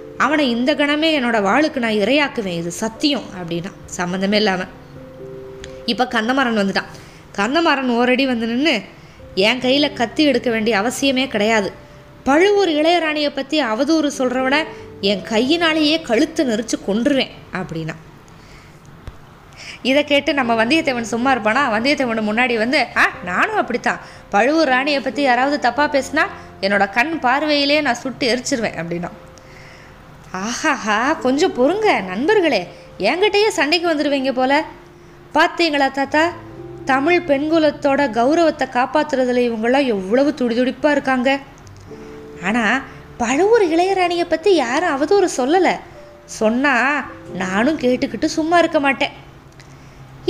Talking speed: 110 wpm